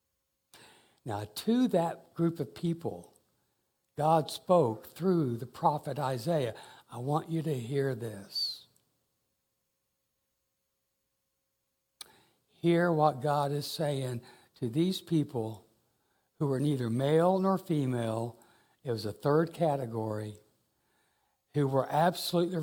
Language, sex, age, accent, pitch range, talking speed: English, male, 60-79, American, 130-170 Hz, 105 wpm